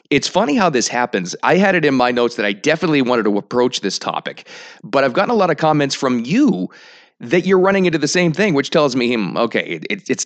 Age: 30-49